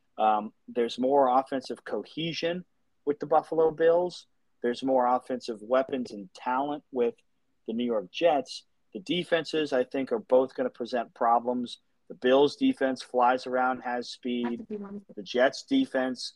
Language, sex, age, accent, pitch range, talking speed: English, male, 30-49, American, 120-140 Hz, 145 wpm